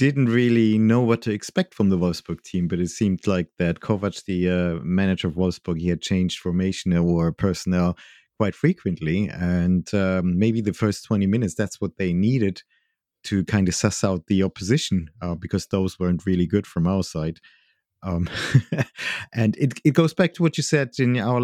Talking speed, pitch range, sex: 190 wpm, 90-120 Hz, male